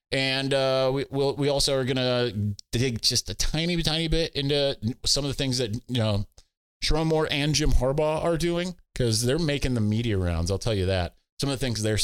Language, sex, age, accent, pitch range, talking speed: English, male, 30-49, American, 110-160 Hz, 225 wpm